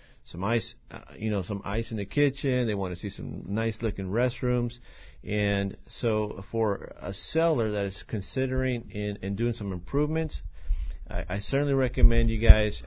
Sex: male